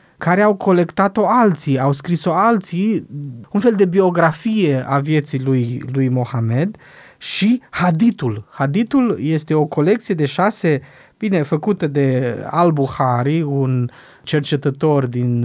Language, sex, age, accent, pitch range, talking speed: Romanian, male, 20-39, native, 140-200 Hz, 125 wpm